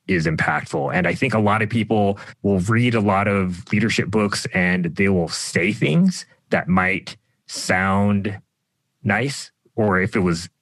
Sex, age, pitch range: male, 30-49, 95-120 Hz